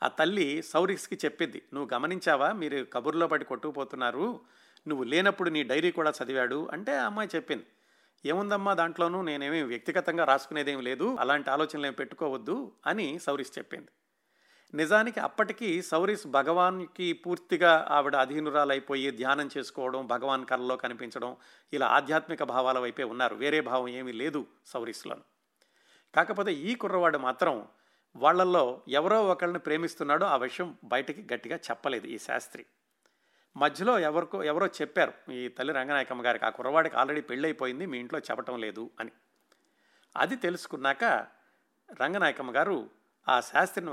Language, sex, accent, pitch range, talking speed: Telugu, male, native, 130-170 Hz, 125 wpm